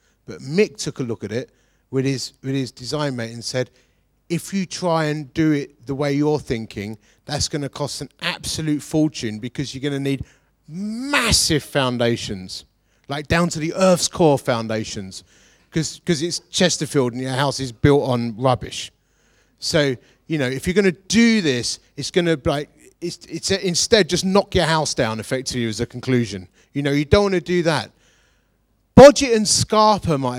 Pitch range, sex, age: 125-170 Hz, male, 30-49